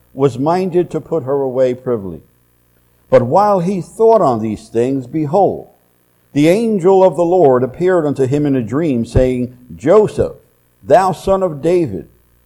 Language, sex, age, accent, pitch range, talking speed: English, male, 60-79, American, 115-170 Hz, 155 wpm